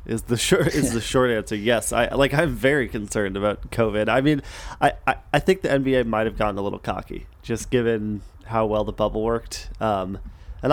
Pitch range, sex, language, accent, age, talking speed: 105-130 Hz, male, English, American, 20-39, 215 wpm